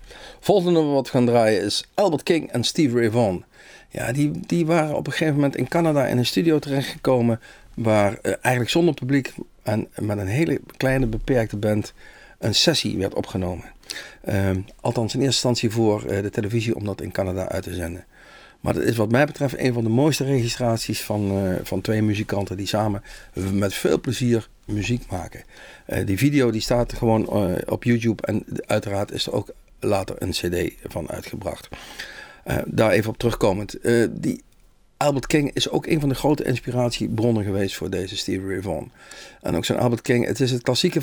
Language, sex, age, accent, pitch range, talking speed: Dutch, male, 50-69, Dutch, 100-125 Hz, 190 wpm